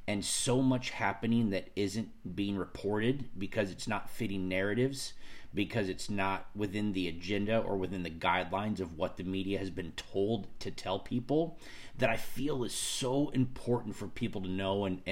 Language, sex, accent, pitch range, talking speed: English, male, American, 95-120 Hz, 175 wpm